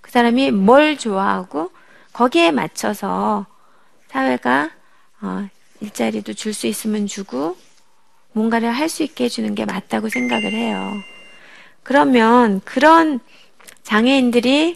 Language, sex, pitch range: Korean, female, 205-270 Hz